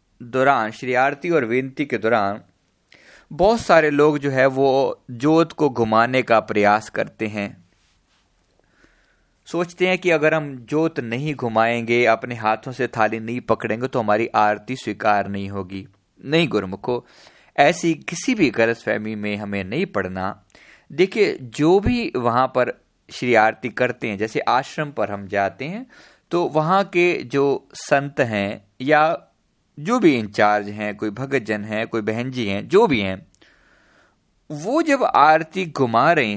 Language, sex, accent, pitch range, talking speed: Hindi, male, native, 110-180 Hz, 155 wpm